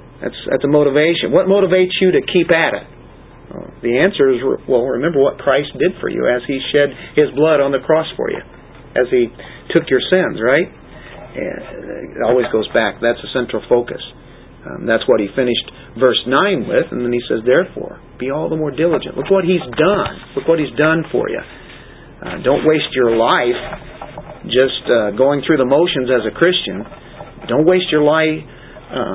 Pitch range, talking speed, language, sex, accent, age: 120-165 Hz, 190 wpm, English, male, American, 50-69